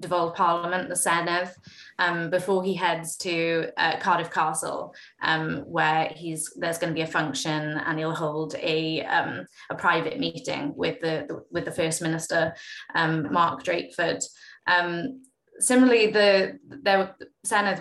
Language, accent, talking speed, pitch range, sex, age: English, British, 145 wpm, 165-195 Hz, female, 20-39